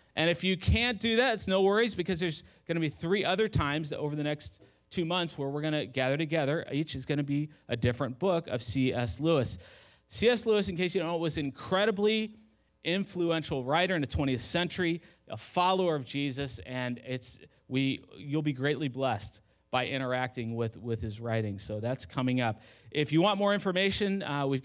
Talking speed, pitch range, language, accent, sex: 205 wpm, 120-165 Hz, English, American, male